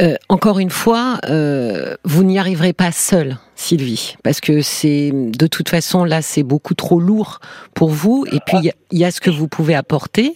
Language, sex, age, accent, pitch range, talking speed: French, female, 50-69, French, 150-185 Hz, 205 wpm